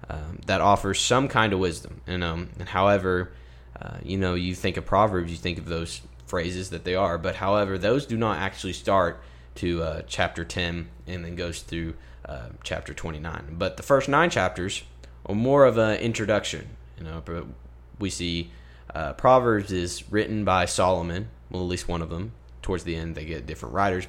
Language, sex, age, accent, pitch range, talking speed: English, male, 10-29, American, 85-105 Hz, 190 wpm